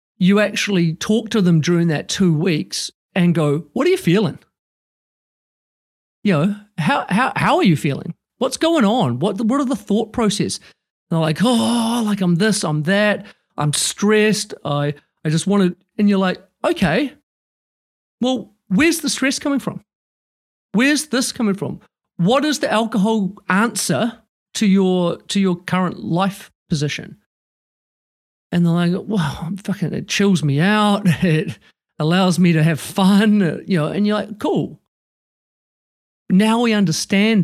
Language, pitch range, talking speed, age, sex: English, 160-210 Hz, 155 wpm, 40-59, male